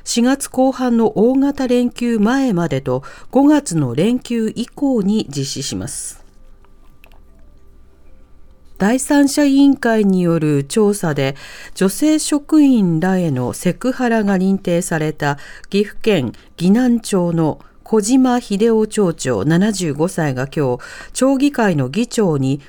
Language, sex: Japanese, female